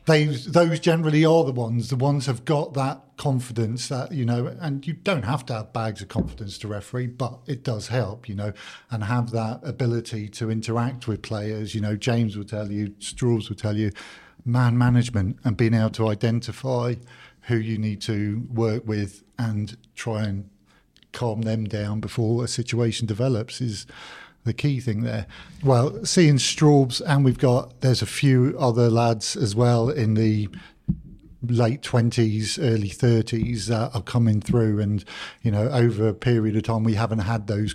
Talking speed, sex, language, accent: 180 wpm, male, English, British